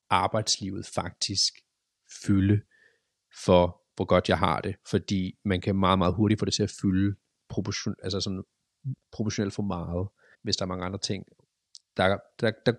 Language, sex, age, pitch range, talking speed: Danish, male, 30-49, 95-110 Hz, 165 wpm